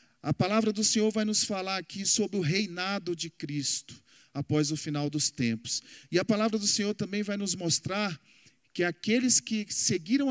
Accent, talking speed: Brazilian, 180 wpm